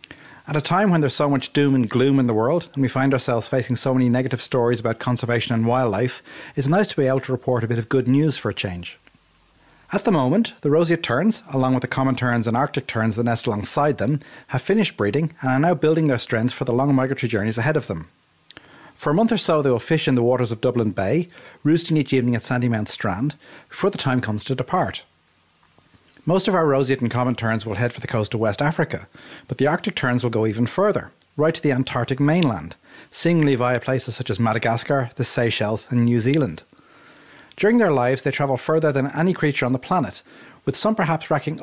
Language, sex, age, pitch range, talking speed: English, male, 40-59, 120-150 Hz, 230 wpm